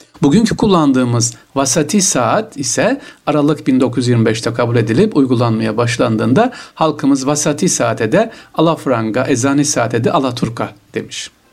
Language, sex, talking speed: Turkish, male, 115 wpm